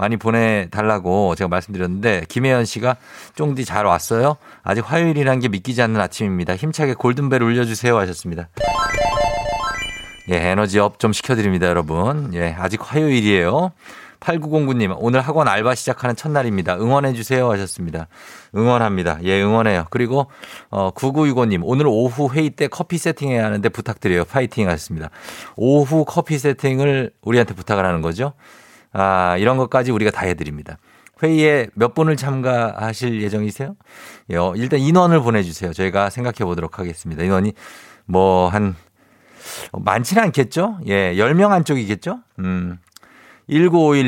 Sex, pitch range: male, 95-135 Hz